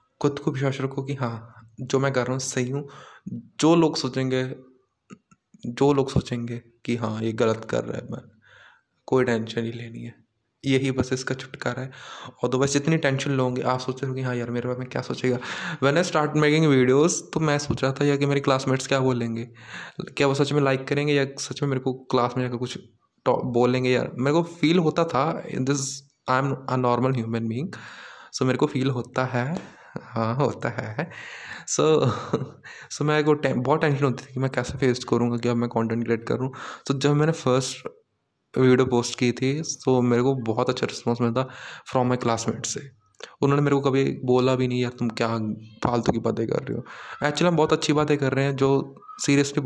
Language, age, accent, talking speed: Hindi, 20-39, native, 210 wpm